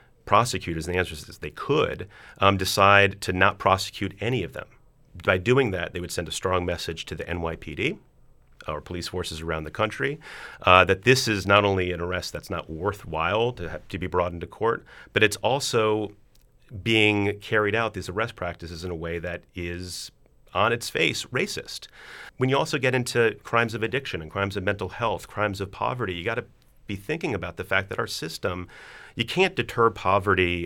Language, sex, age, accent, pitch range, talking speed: English, male, 40-59, American, 85-110 Hz, 195 wpm